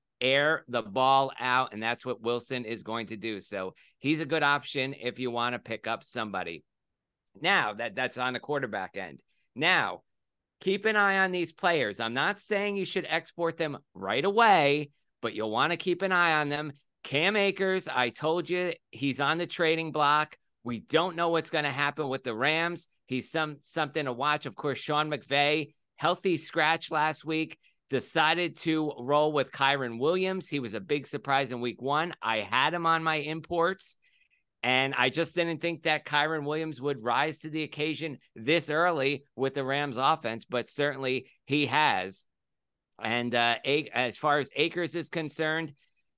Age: 50-69